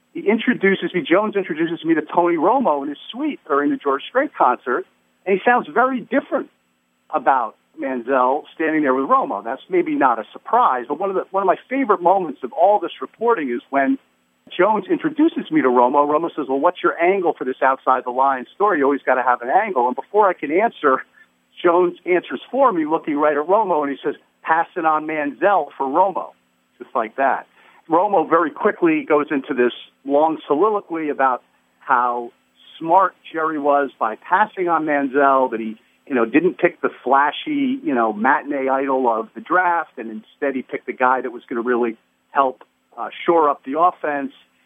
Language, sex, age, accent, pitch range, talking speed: English, male, 50-69, American, 130-195 Hz, 195 wpm